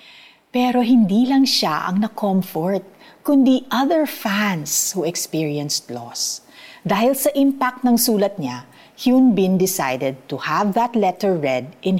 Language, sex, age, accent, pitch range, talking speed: Filipino, female, 50-69, native, 155-220 Hz, 135 wpm